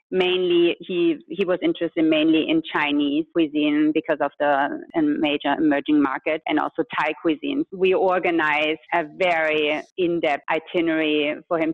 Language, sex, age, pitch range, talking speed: English, female, 30-49, 150-190 Hz, 140 wpm